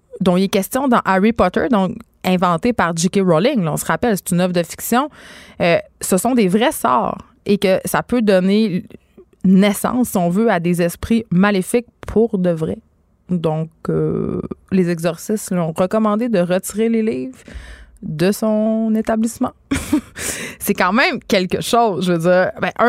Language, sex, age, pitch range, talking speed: French, female, 20-39, 185-225 Hz, 170 wpm